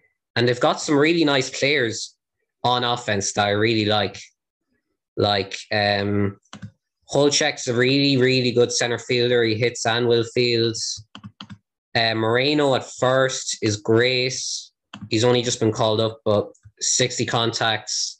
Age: 20-39